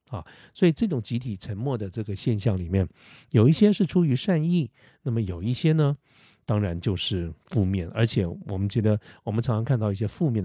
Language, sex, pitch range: Chinese, male, 105-135 Hz